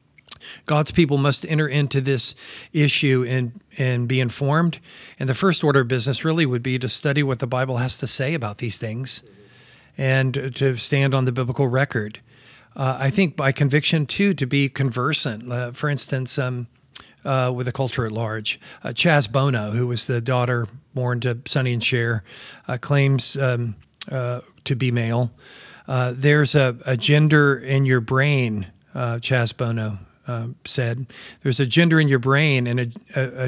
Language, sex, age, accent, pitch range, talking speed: English, male, 40-59, American, 125-145 Hz, 175 wpm